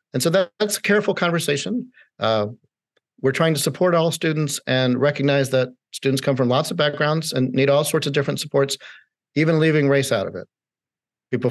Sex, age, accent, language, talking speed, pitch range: male, 50-69, American, English, 190 wpm, 130-165 Hz